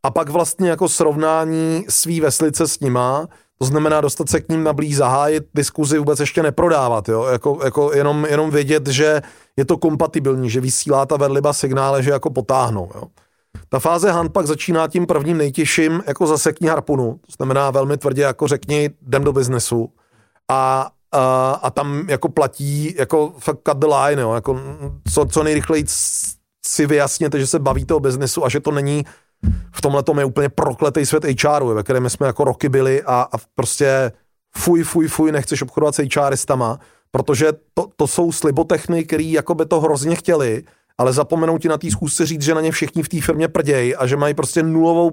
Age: 30-49